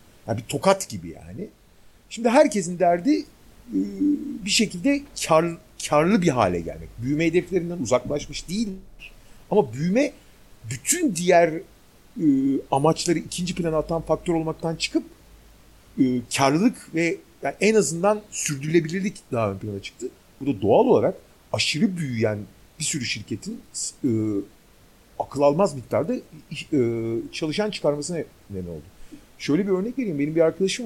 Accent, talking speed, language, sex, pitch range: native, 115 wpm, Turkish, male, 115-190 Hz